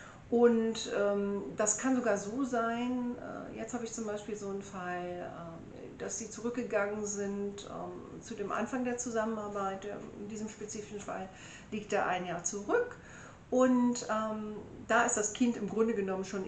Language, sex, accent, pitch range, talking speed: German, female, German, 195-235 Hz, 170 wpm